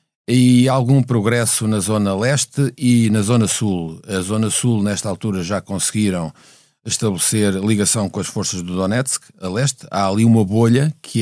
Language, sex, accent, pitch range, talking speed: Portuguese, male, Portuguese, 105-125 Hz, 165 wpm